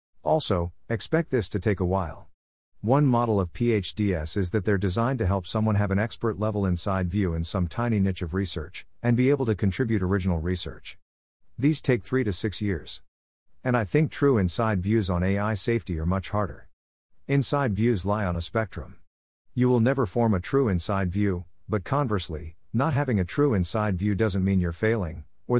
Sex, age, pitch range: male, 50-69, 90-120 Hz